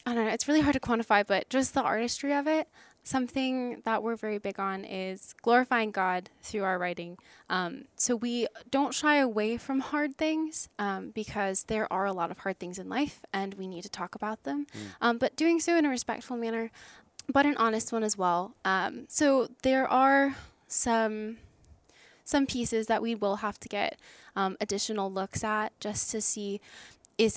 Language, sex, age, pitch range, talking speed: English, female, 10-29, 195-245 Hz, 195 wpm